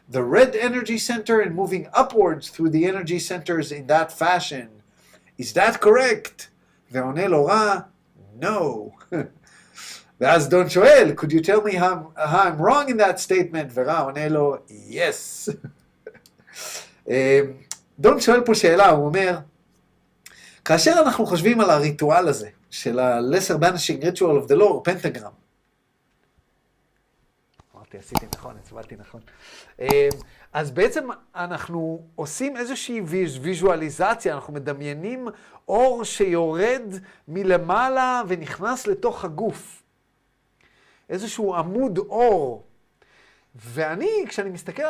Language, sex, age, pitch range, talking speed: Hebrew, male, 50-69, 155-225 Hz, 110 wpm